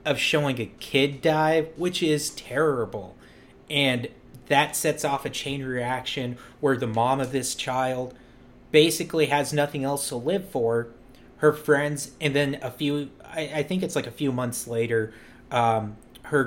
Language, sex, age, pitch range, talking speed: English, male, 30-49, 125-155 Hz, 165 wpm